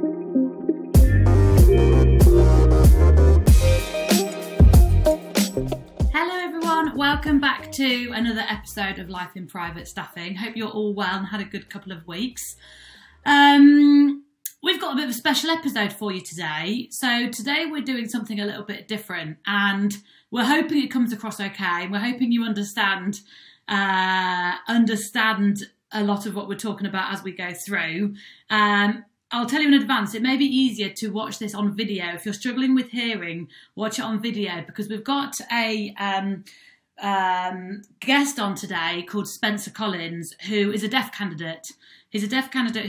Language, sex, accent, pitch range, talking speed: English, female, British, 185-245 Hz, 160 wpm